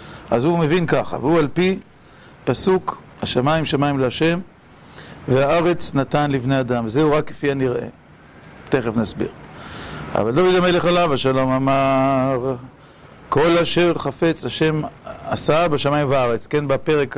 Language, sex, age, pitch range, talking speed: Hebrew, male, 40-59, 130-155 Hz, 130 wpm